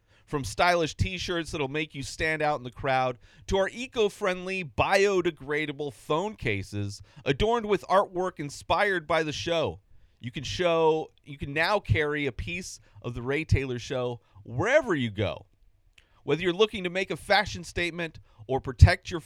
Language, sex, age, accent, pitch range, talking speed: English, male, 30-49, American, 110-160 Hz, 160 wpm